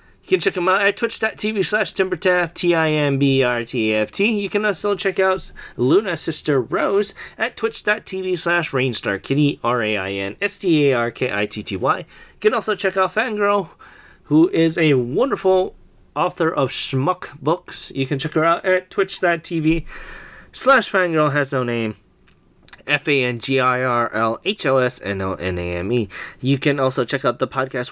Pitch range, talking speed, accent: 125-185 Hz, 120 wpm, American